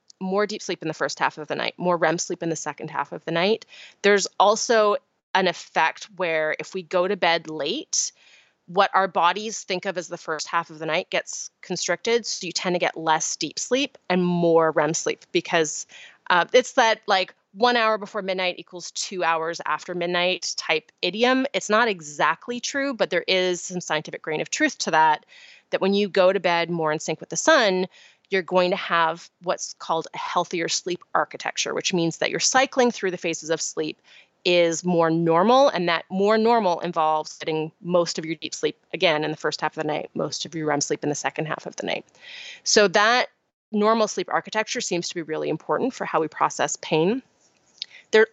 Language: English